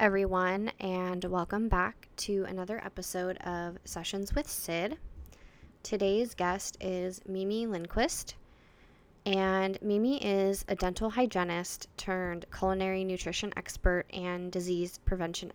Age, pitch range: 10-29, 180-195 Hz